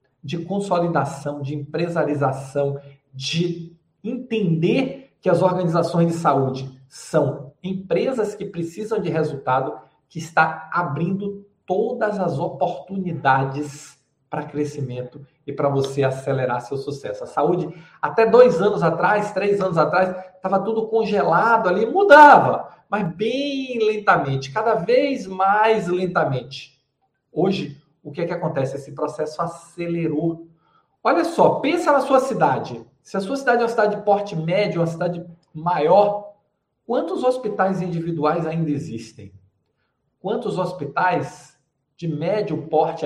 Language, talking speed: Portuguese, 125 wpm